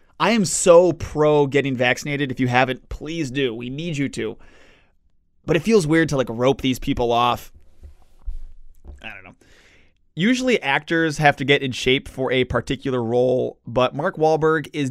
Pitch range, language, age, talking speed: 125-160 Hz, English, 20-39, 175 wpm